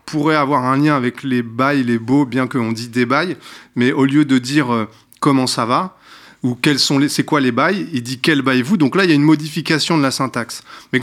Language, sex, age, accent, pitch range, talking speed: French, male, 30-49, French, 120-145 Hz, 255 wpm